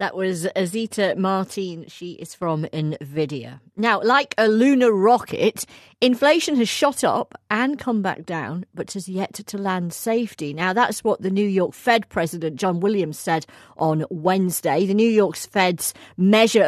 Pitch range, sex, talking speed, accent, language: 165-220 Hz, female, 160 wpm, British, English